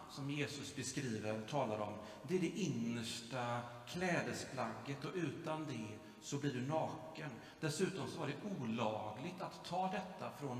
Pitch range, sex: 120-155 Hz, male